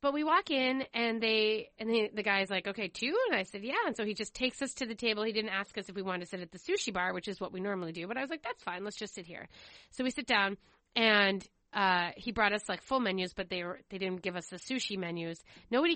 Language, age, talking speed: English, 30-49, 295 wpm